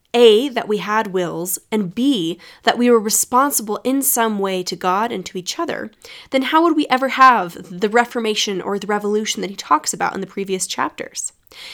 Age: 20-39